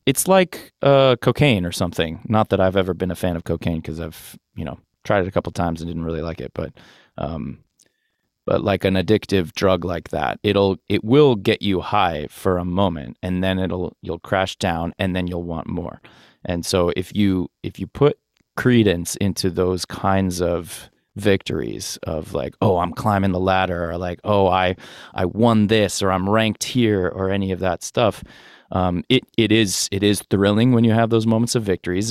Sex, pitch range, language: male, 85-105 Hz, English